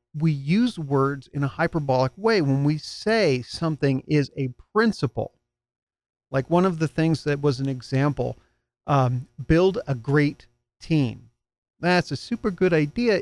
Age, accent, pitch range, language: 40-59, American, 125-165 Hz, English